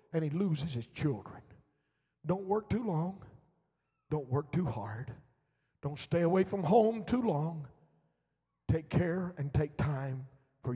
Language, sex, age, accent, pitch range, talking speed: English, male, 50-69, American, 140-180 Hz, 145 wpm